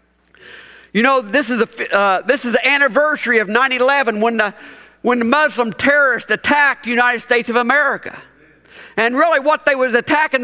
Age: 50-69